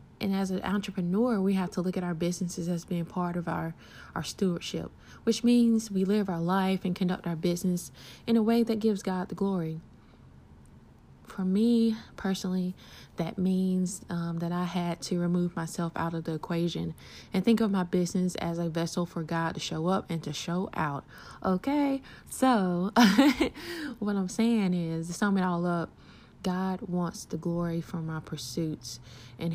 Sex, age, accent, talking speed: female, 20-39, American, 180 wpm